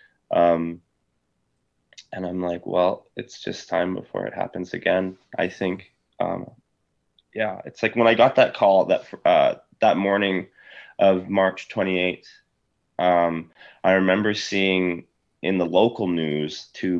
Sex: male